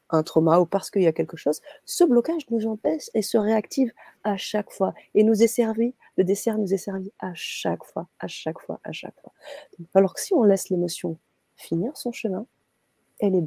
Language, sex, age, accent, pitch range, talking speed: French, female, 30-49, French, 175-230 Hz, 215 wpm